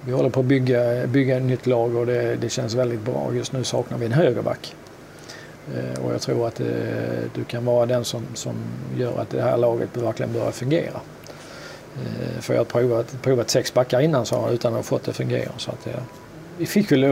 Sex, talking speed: male, 210 wpm